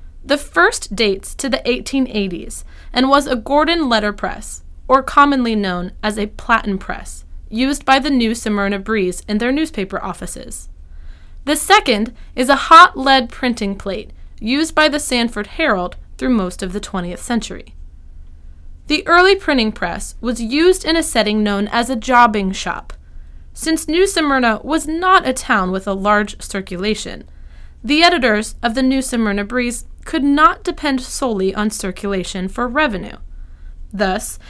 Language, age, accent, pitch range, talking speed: English, 20-39, American, 195-285 Hz, 155 wpm